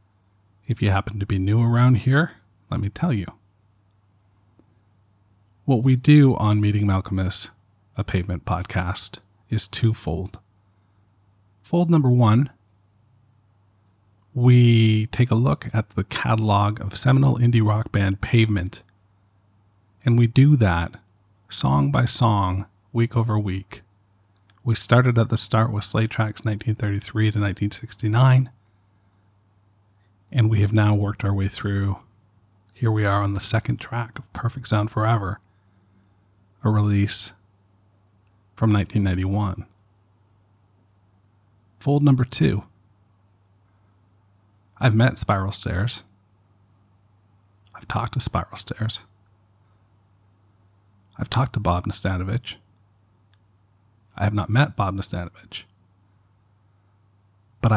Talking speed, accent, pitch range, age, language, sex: 110 wpm, American, 100-110 Hz, 40-59, English, male